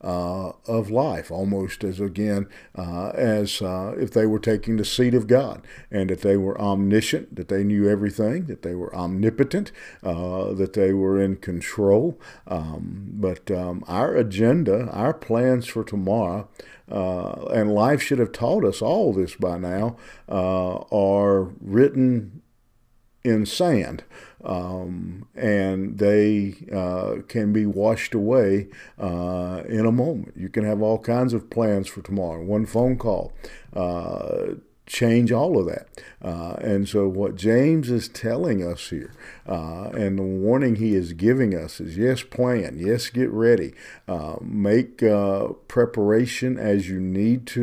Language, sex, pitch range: English, male, 95-115 Hz